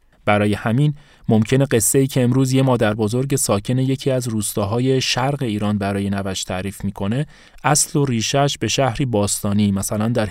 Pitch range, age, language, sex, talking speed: 100-135 Hz, 30-49, Persian, male, 165 wpm